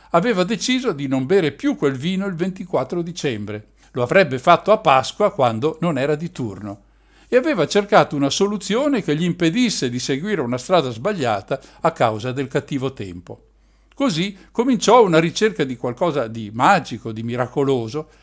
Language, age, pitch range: Italian, 60-79, 125-185 Hz